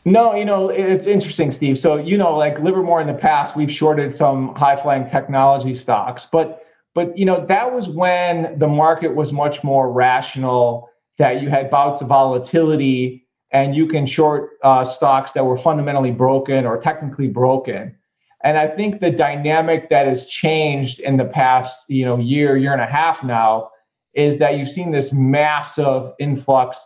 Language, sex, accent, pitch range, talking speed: English, male, American, 130-155 Hz, 175 wpm